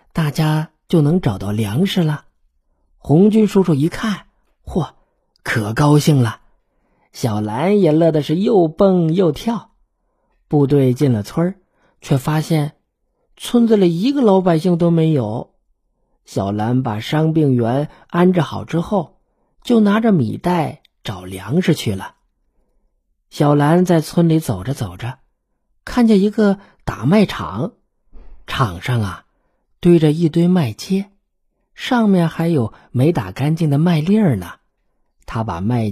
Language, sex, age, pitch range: Chinese, male, 50-69, 120-180 Hz